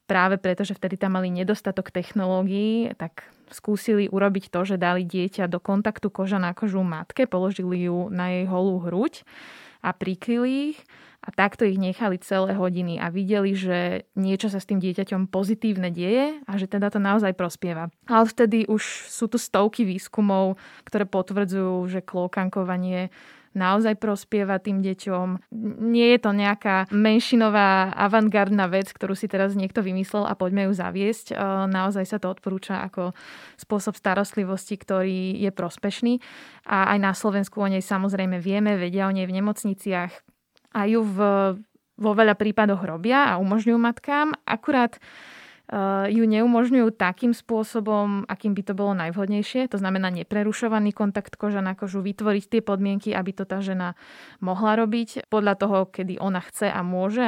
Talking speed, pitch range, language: 155 wpm, 185-215 Hz, Slovak